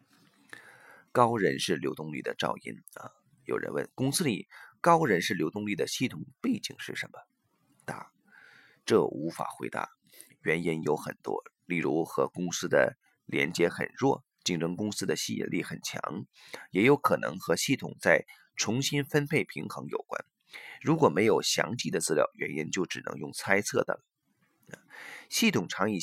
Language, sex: Chinese, male